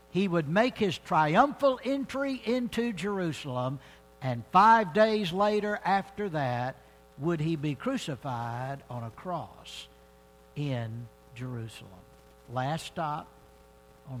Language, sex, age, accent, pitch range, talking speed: English, male, 60-79, American, 125-200 Hz, 110 wpm